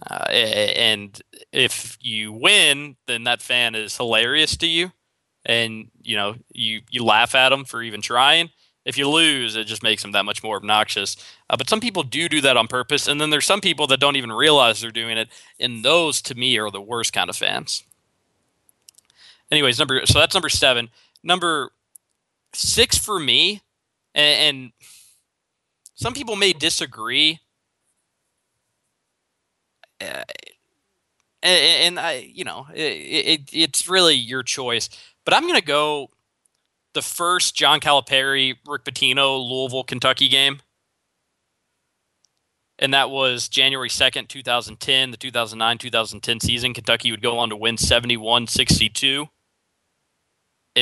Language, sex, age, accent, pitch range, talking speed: English, male, 20-39, American, 115-145 Hz, 135 wpm